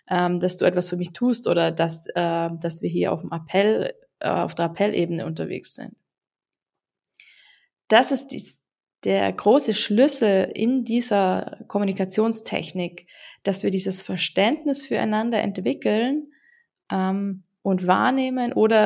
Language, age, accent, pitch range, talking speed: German, 20-39, German, 180-220 Hz, 120 wpm